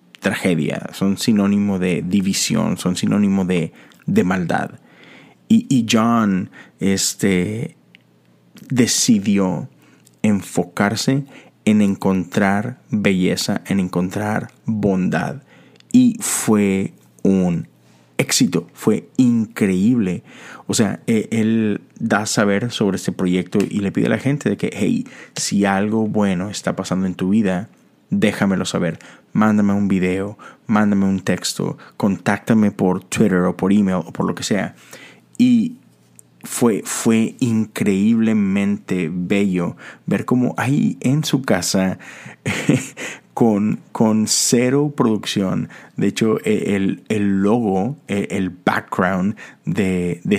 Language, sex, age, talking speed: Spanish, male, 30-49, 115 wpm